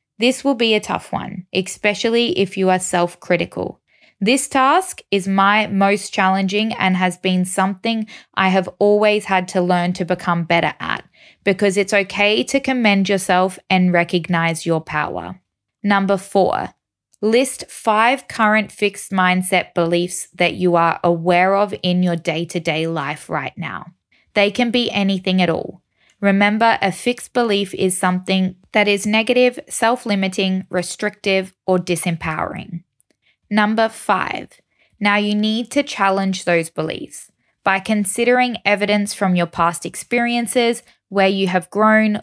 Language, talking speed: English, 140 wpm